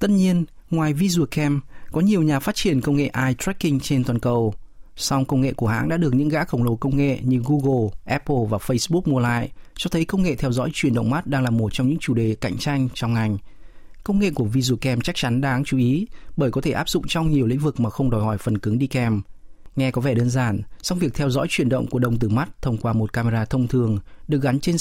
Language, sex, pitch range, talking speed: Vietnamese, male, 120-150 Hz, 255 wpm